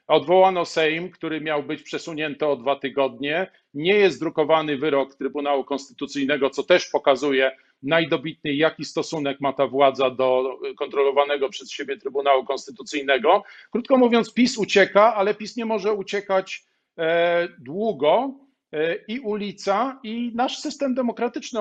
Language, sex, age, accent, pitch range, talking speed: Polish, male, 40-59, native, 150-200 Hz, 130 wpm